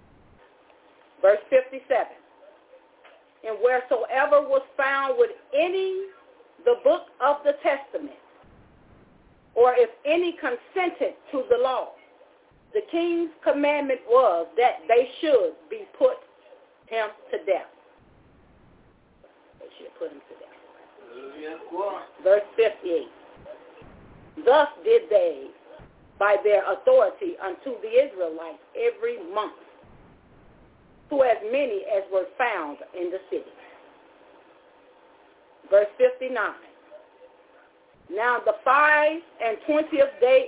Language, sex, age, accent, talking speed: English, female, 40-59, American, 100 wpm